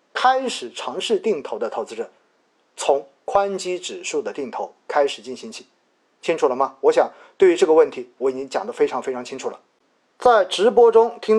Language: Chinese